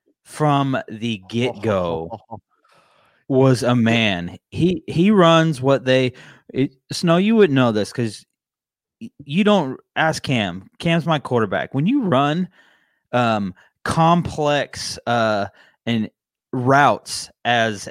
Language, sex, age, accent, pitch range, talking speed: English, male, 20-39, American, 110-140 Hz, 115 wpm